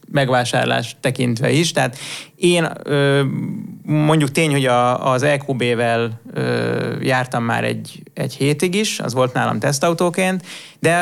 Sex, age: male, 30-49